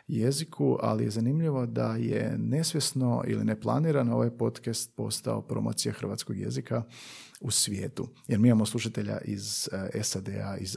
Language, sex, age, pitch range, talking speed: Croatian, male, 40-59, 105-125 Hz, 135 wpm